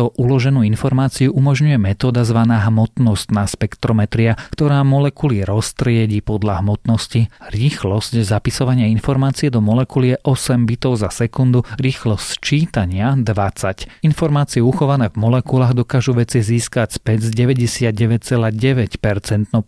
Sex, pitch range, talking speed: male, 110-130 Hz, 105 wpm